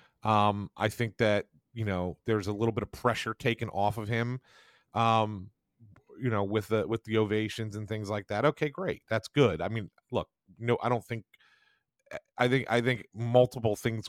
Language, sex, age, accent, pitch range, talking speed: English, male, 40-59, American, 95-115 Hz, 190 wpm